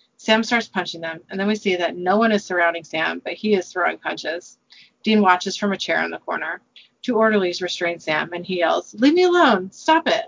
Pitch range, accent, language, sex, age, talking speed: 180-245 Hz, American, English, female, 30-49, 230 wpm